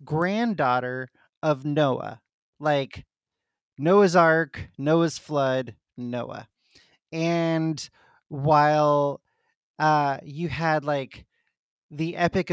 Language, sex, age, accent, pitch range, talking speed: English, male, 30-49, American, 135-165 Hz, 80 wpm